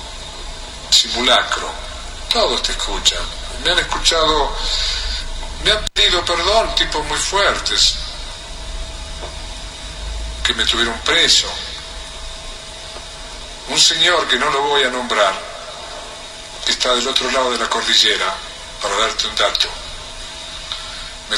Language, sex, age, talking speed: Spanish, male, 50-69, 110 wpm